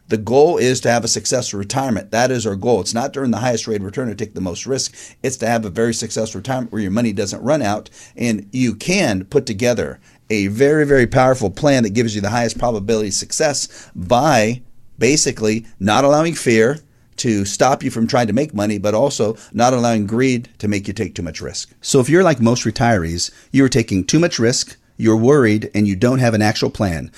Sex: male